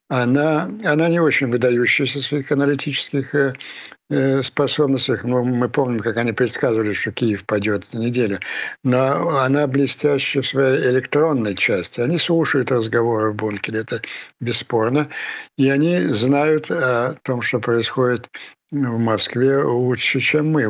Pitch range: 115-145 Hz